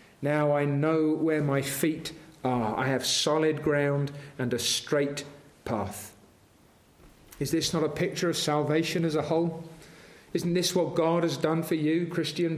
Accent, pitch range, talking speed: British, 140-180 Hz, 160 wpm